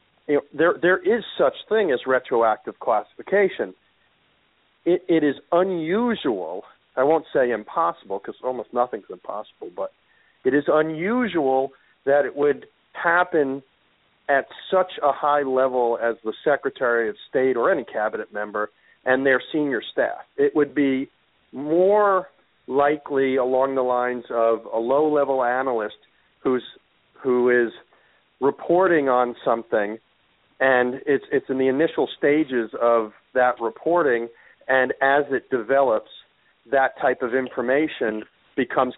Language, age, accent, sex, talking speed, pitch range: English, 50-69, American, male, 130 wpm, 120-145 Hz